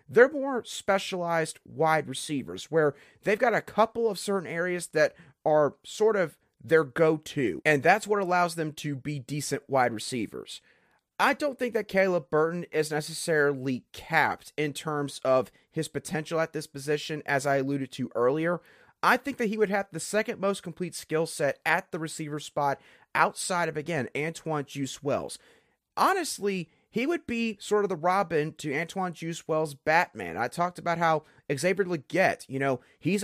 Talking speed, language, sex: 170 wpm, English, male